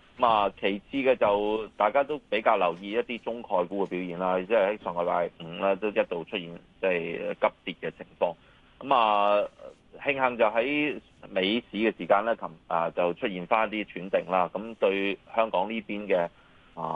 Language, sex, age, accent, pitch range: Chinese, male, 30-49, native, 90-110 Hz